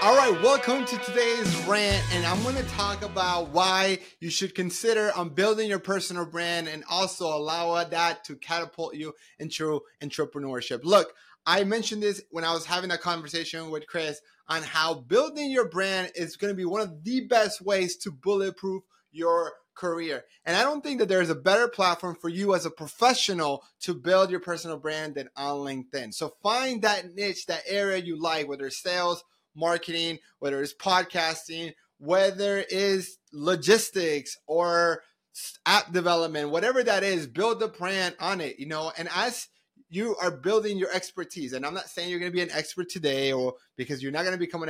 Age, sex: 30-49, male